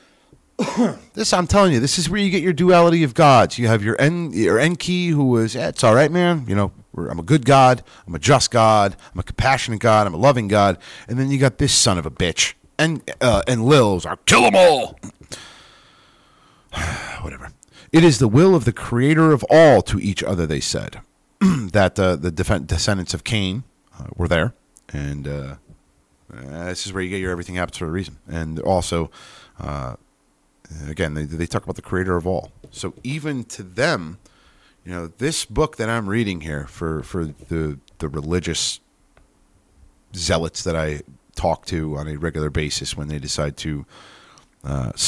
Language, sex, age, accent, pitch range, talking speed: English, male, 40-59, American, 80-120 Hz, 195 wpm